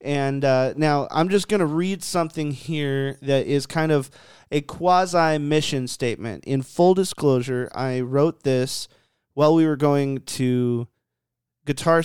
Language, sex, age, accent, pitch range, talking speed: English, male, 30-49, American, 135-175 Hz, 145 wpm